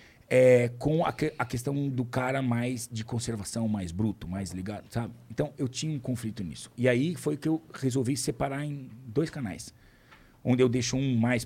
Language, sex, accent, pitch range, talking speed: Portuguese, male, Brazilian, 110-130 Hz, 190 wpm